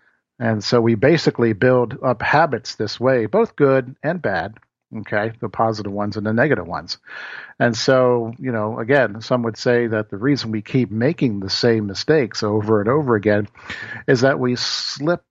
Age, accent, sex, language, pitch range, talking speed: 50-69, American, male, English, 110-140 Hz, 180 wpm